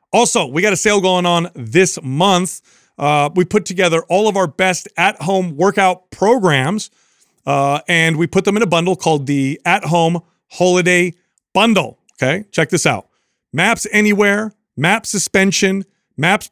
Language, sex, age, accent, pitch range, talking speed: English, male, 30-49, American, 150-195 Hz, 155 wpm